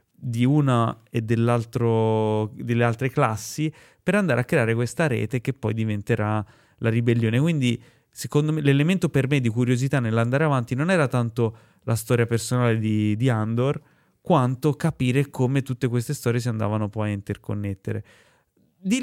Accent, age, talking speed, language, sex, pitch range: native, 20-39, 155 wpm, Italian, male, 115-140 Hz